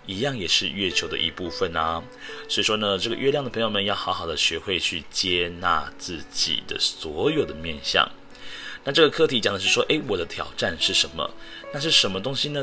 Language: Chinese